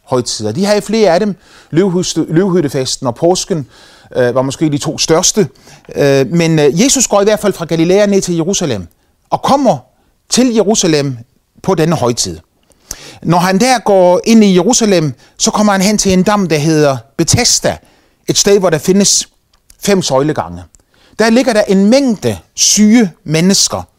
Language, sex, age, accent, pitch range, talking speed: Danish, male, 30-49, native, 145-210 Hz, 160 wpm